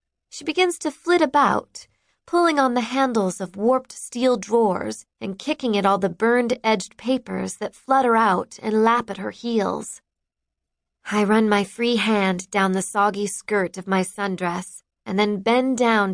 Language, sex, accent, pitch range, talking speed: English, female, American, 190-235 Hz, 165 wpm